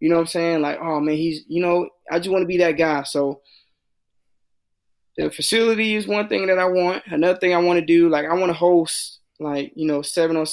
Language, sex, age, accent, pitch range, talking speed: English, male, 20-39, American, 145-175 Hz, 245 wpm